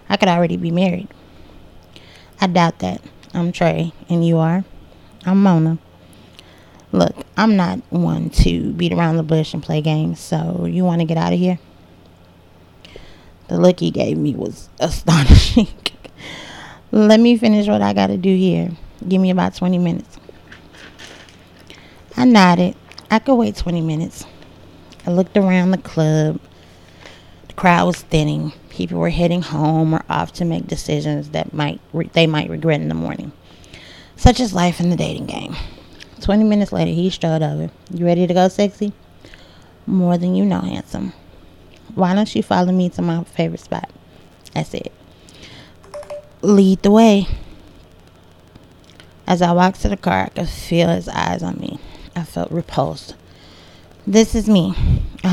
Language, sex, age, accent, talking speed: English, female, 20-39, American, 160 wpm